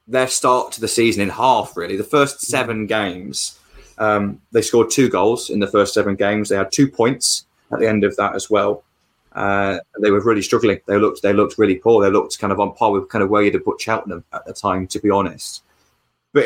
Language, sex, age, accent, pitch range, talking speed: English, male, 20-39, British, 100-130 Hz, 235 wpm